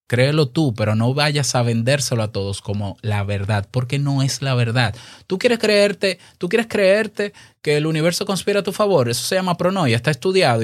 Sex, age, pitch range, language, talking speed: male, 20-39, 115-155 Hz, Spanish, 205 wpm